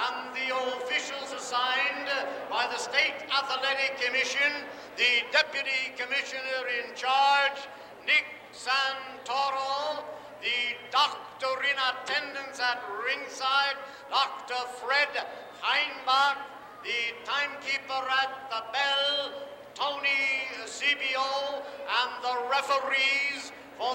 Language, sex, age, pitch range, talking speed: English, male, 60-79, 255-280 Hz, 95 wpm